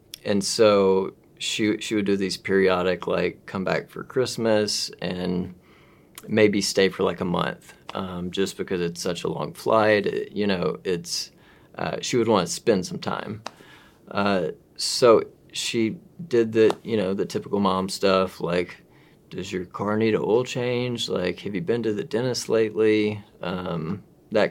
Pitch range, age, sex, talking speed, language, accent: 90-110 Hz, 30-49, male, 170 wpm, English, American